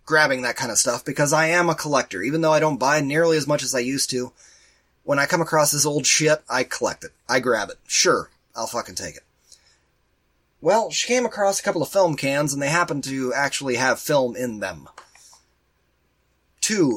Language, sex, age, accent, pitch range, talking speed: English, male, 30-49, American, 130-170 Hz, 210 wpm